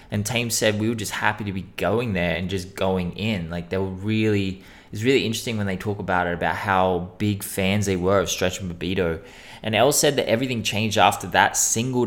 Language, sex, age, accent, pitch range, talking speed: English, male, 20-39, Australian, 95-110 Hz, 230 wpm